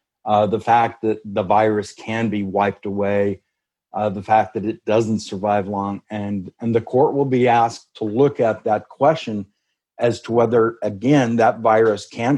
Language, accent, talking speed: English, American, 180 wpm